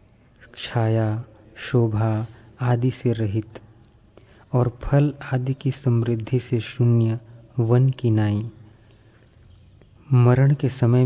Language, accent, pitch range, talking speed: Hindi, native, 110-125 Hz, 100 wpm